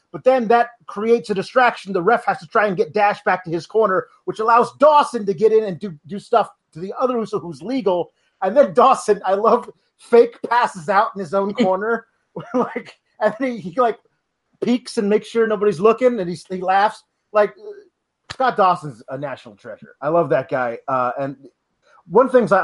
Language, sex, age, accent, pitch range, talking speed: English, male, 30-49, American, 175-235 Hz, 200 wpm